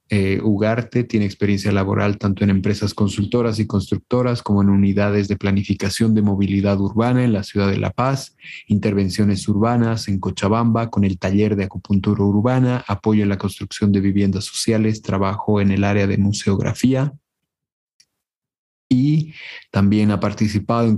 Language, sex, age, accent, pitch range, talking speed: Spanish, male, 30-49, Mexican, 100-115 Hz, 150 wpm